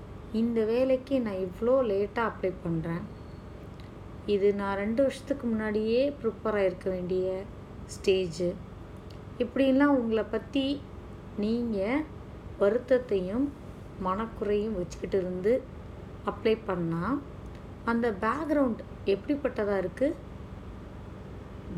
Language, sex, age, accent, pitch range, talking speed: Tamil, female, 30-49, native, 185-235 Hz, 85 wpm